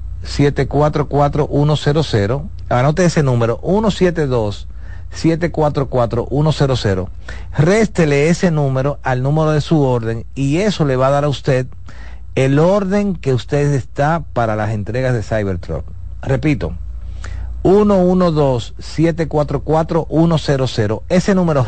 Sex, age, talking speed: male, 40-59, 100 wpm